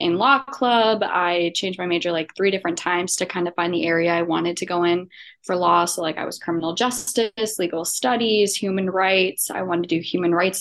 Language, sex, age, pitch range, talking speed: English, female, 20-39, 175-205 Hz, 225 wpm